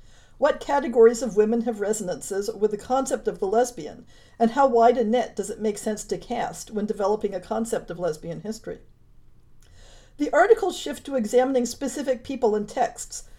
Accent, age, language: American, 50-69, English